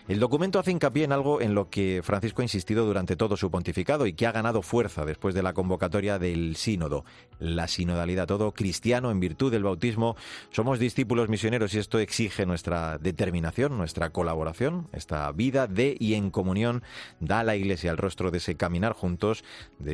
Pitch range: 90-115 Hz